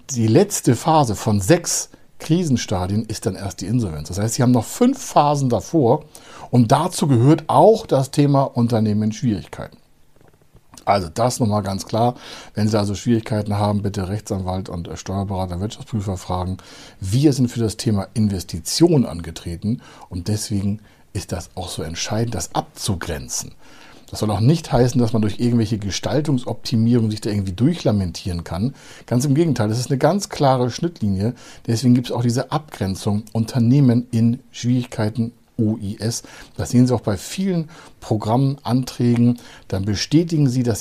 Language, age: German, 60-79